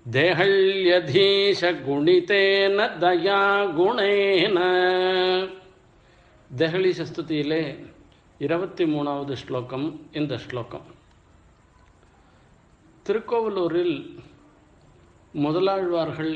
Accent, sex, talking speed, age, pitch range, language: native, male, 45 wpm, 50-69, 135-185 Hz, Tamil